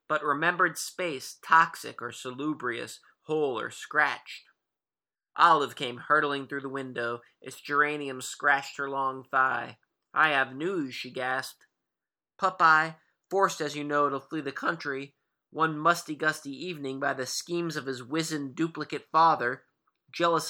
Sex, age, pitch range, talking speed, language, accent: male, 30-49, 135-160 Hz, 140 wpm, English, American